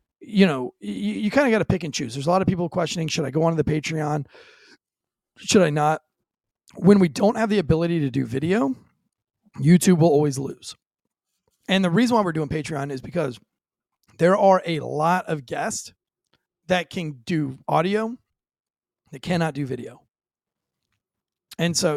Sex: male